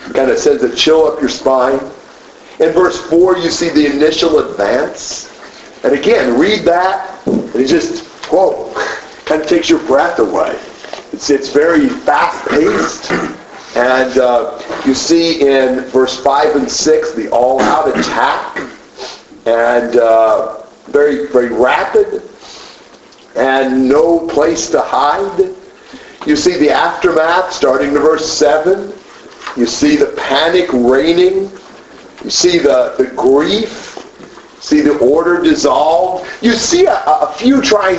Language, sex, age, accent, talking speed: English, male, 50-69, American, 135 wpm